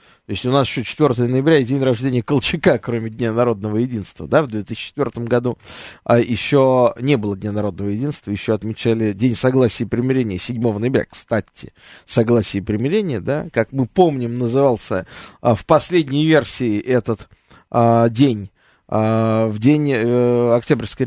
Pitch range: 110-150 Hz